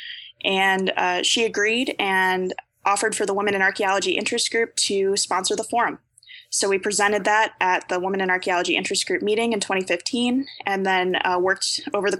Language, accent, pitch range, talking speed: English, American, 190-220 Hz, 180 wpm